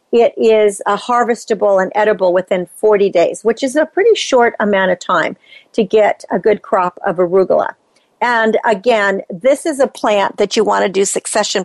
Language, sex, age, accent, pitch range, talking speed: English, female, 50-69, American, 200-265 Hz, 185 wpm